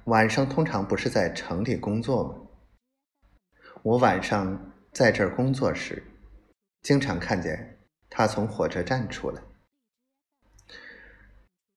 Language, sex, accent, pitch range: Chinese, male, native, 100-130 Hz